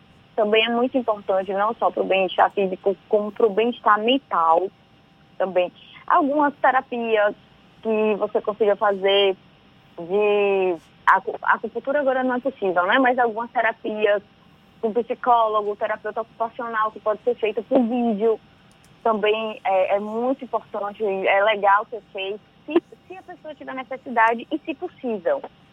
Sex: female